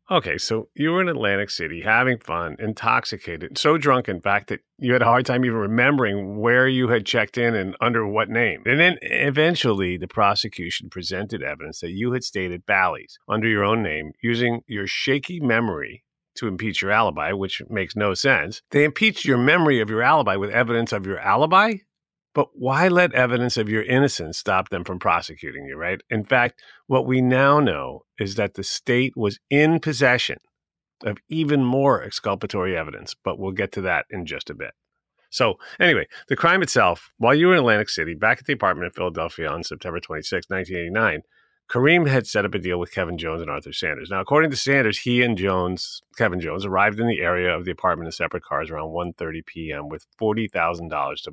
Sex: male